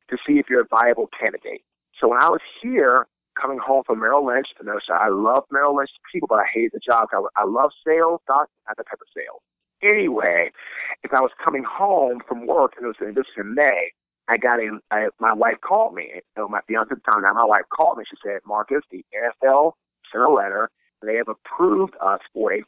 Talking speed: 220 wpm